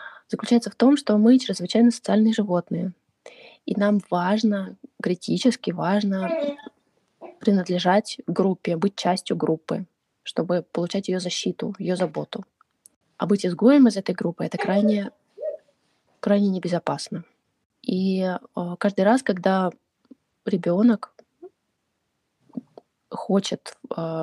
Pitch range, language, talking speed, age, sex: 175-235 Hz, Russian, 100 wpm, 20-39, female